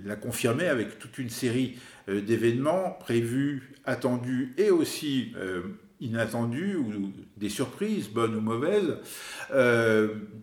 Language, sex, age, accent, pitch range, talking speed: French, male, 50-69, French, 95-120 Hz, 125 wpm